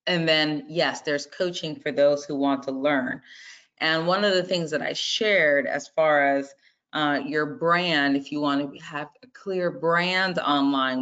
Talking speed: 185 wpm